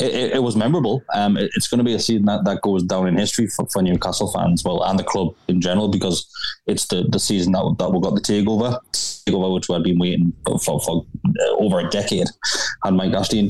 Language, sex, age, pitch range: English, male, 20-39, 90-110 Hz